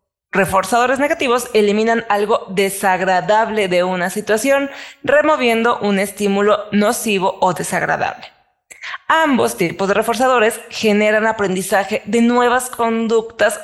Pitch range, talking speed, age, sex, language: 190-245 Hz, 100 wpm, 20-39, female, Spanish